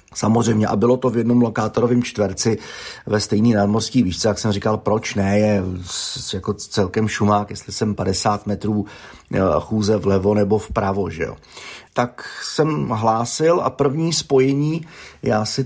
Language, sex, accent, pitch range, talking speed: Czech, male, native, 105-135 Hz, 150 wpm